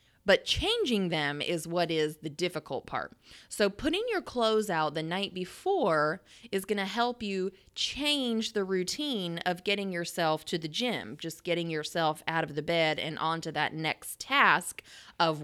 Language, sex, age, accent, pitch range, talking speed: English, female, 20-39, American, 160-220 Hz, 170 wpm